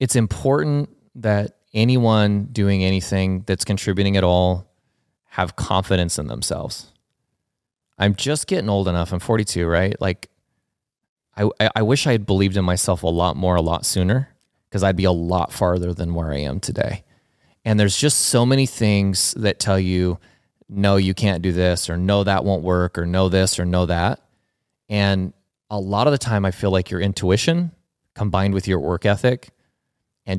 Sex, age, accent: male, 30-49, American